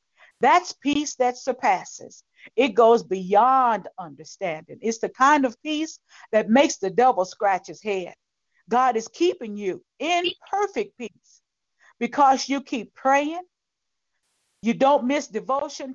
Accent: American